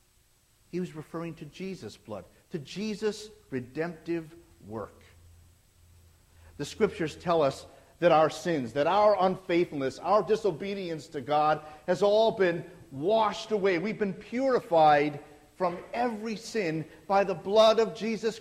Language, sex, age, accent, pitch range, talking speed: English, male, 50-69, American, 125-185 Hz, 130 wpm